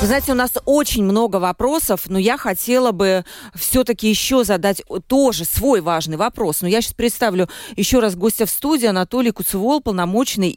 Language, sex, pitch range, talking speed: Russian, female, 180-240 Hz, 170 wpm